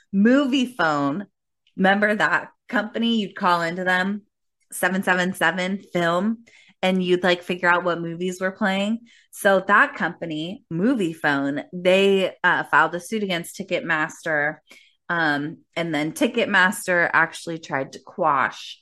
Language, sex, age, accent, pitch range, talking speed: English, female, 20-39, American, 170-215 Hz, 135 wpm